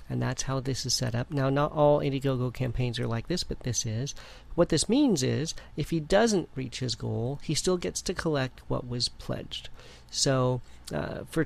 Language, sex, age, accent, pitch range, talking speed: English, male, 40-59, American, 120-140 Hz, 205 wpm